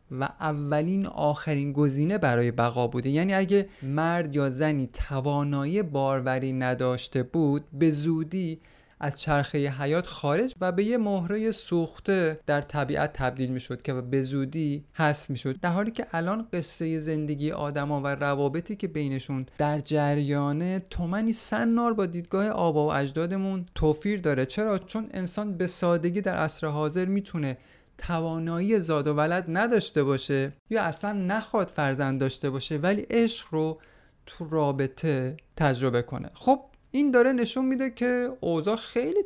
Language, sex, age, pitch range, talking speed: Persian, male, 30-49, 135-185 Hz, 150 wpm